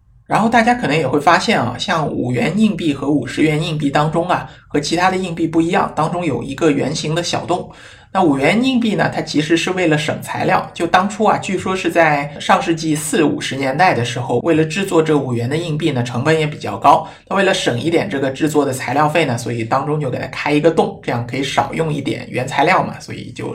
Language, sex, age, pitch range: Chinese, male, 50-69, 135-170 Hz